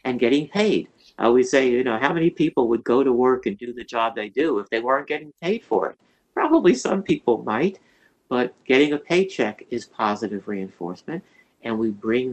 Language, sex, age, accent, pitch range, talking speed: English, male, 50-69, American, 100-120 Hz, 205 wpm